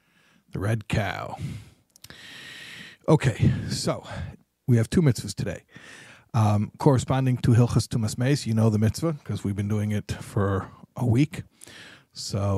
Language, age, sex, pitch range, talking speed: English, 50-69, male, 110-150 Hz, 140 wpm